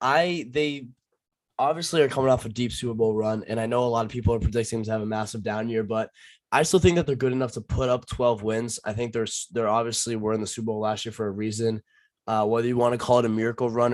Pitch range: 110-125 Hz